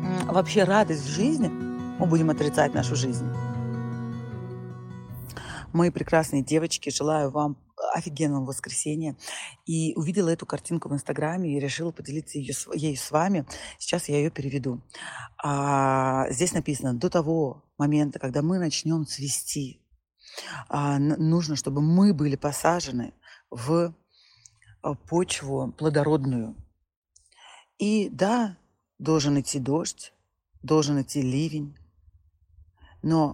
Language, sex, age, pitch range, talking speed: Russian, female, 30-49, 125-165 Hz, 105 wpm